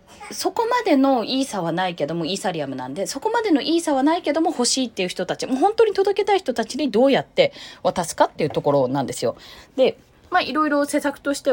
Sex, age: female, 20-39